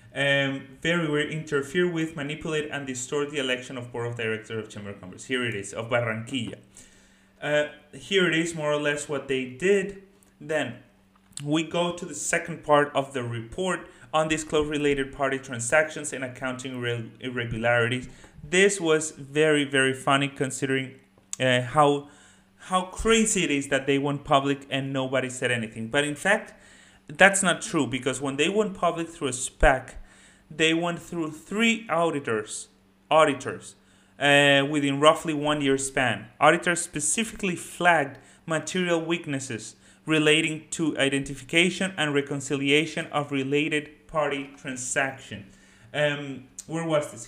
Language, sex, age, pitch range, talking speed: English, male, 30-49, 125-155 Hz, 145 wpm